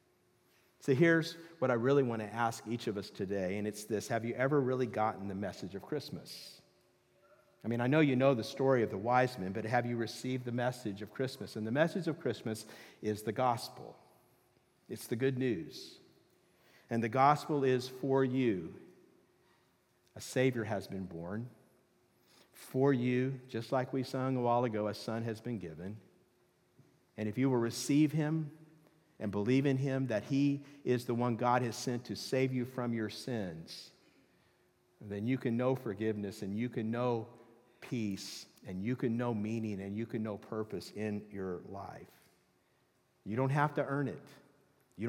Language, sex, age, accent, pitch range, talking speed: English, male, 50-69, American, 110-130 Hz, 180 wpm